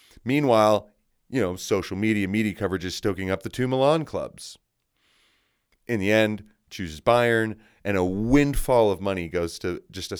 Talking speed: 165 wpm